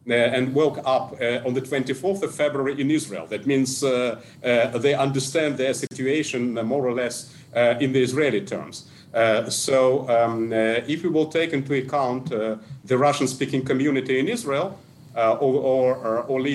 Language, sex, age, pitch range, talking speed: English, male, 40-59, 120-145 Hz, 170 wpm